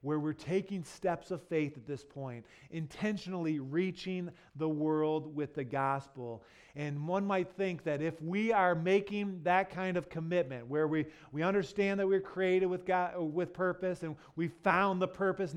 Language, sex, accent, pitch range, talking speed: English, male, American, 165-210 Hz, 175 wpm